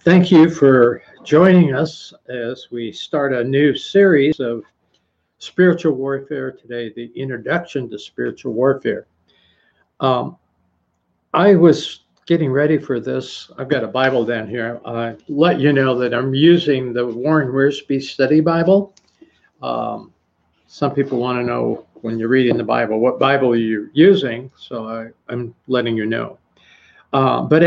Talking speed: 145 wpm